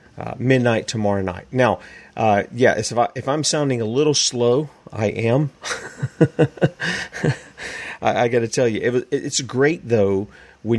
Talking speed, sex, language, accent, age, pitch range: 155 wpm, male, English, American, 40-59, 105-130 Hz